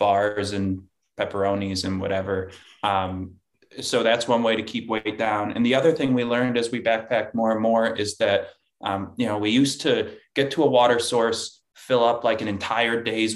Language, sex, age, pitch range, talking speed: English, male, 20-39, 100-120 Hz, 200 wpm